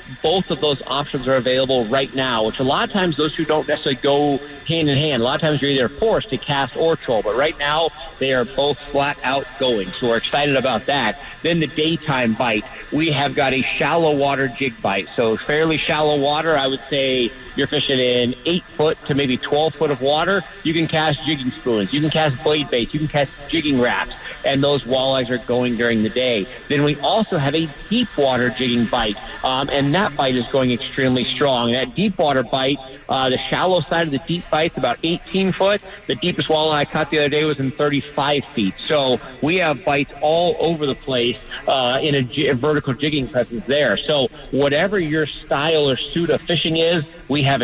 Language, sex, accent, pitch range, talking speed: English, male, American, 130-155 Hz, 210 wpm